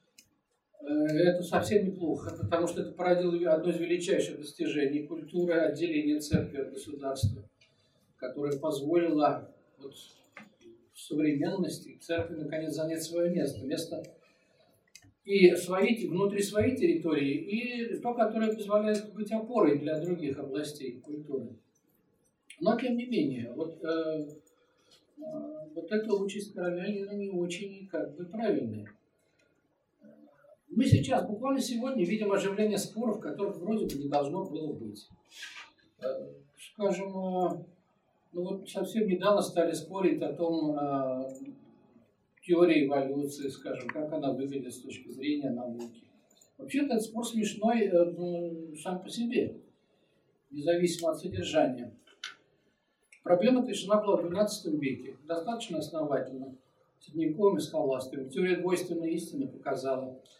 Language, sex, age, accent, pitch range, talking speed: Russian, male, 50-69, native, 145-200 Hz, 115 wpm